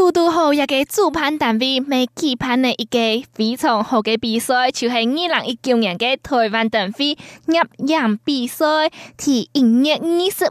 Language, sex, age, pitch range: Chinese, female, 20-39, 235-315 Hz